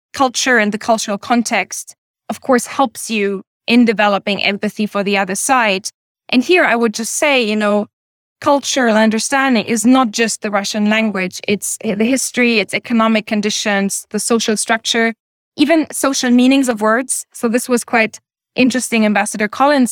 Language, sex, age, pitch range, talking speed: English, female, 20-39, 210-245 Hz, 160 wpm